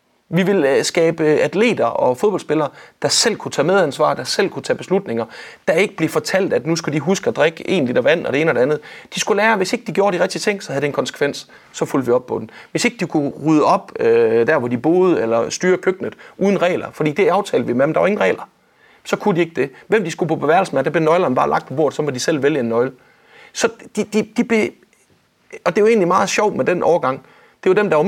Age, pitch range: 30-49, 145-210 Hz